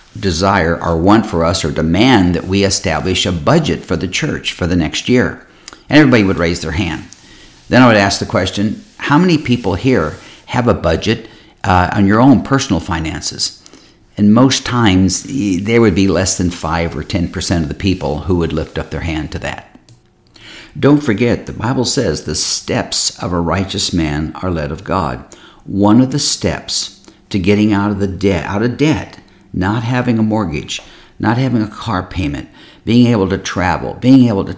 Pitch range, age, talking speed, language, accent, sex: 85-120 Hz, 60-79, 195 wpm, English, American, male